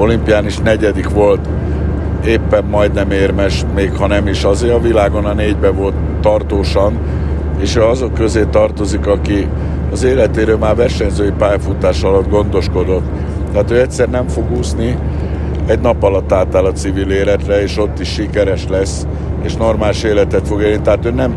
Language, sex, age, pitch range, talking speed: Hungarian, male, 60-79, 80-100 Hz, 160 wpm